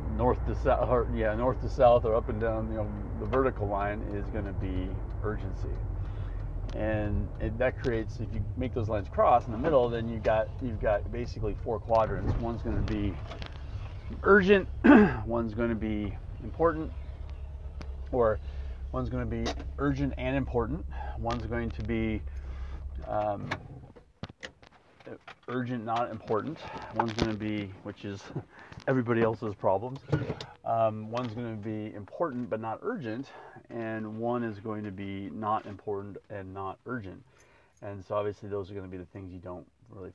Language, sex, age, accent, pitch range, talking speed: English, male, 40-59, American, 100-115 Hz, 165 wpm